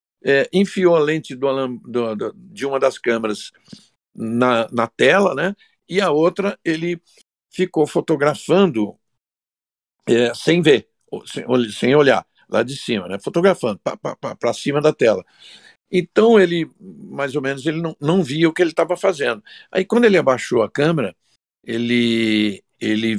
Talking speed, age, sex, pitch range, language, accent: 135 wpm, 60-79, male, 115-170 Hz, Portuguese, Brazilian